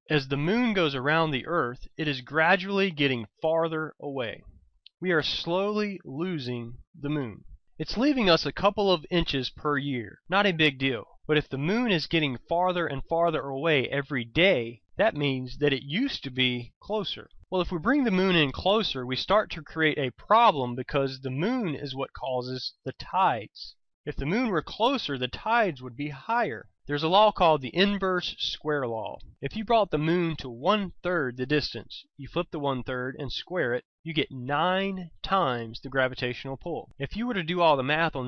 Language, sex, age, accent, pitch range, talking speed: English, male, 30-49, American, 130-175 Hz, 195 wpm